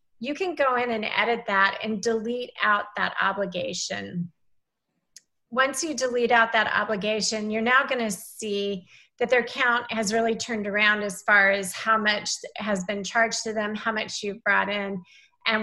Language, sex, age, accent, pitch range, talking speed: English, female, 30-49, American, 200-235 Hz, 175 wpm